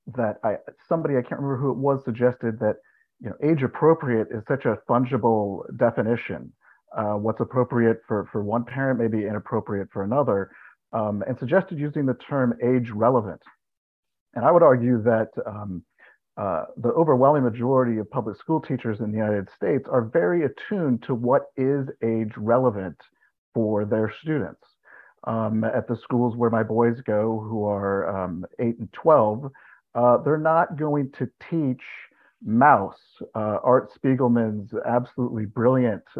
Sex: male